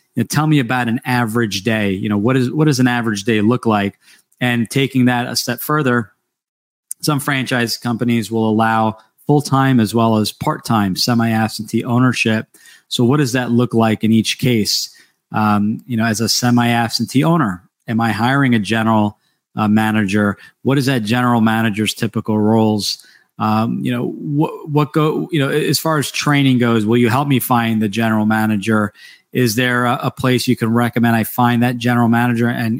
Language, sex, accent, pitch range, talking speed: English, male, American, 110-125 Hz, 190 wpm